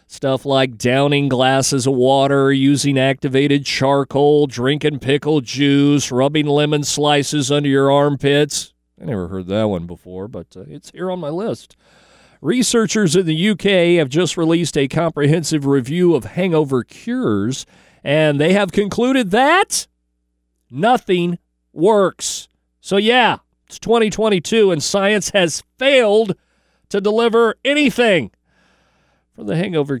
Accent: American